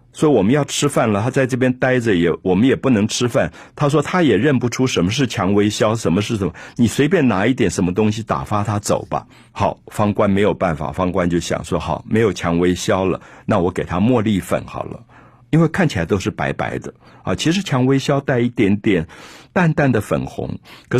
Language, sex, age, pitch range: Chinese, male, 50-69, 95-130 Hz